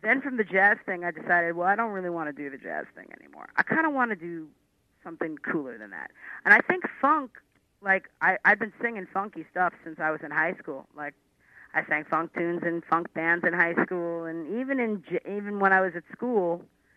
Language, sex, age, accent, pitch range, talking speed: English, female, 40-59, American, 160-200 Hz, 230 wpm